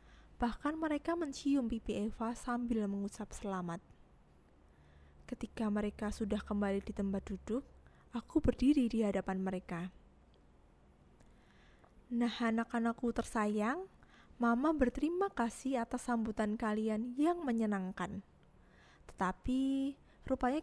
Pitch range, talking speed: 205-255 Hz, 95 wpm